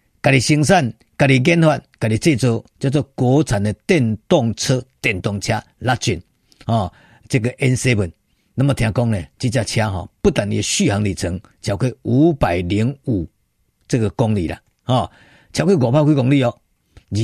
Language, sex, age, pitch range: Chinese, male, 50-69, 110-150 Hz